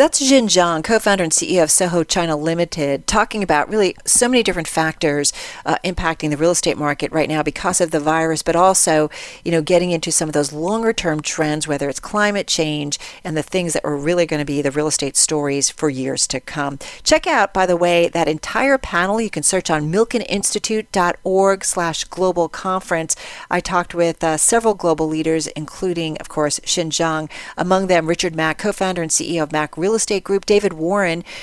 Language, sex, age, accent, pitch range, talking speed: English, female, 40-59, American, 155-195 Hz, 195 wpm